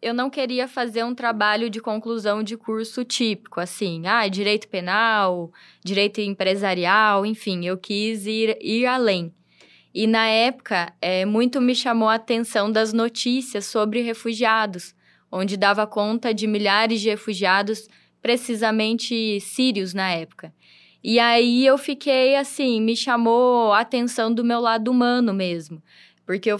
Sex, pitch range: female, 210-245 Hz